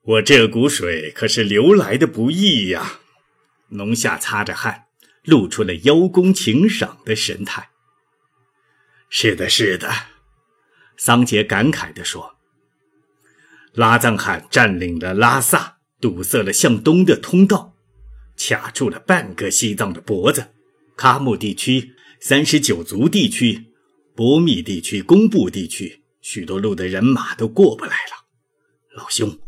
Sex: male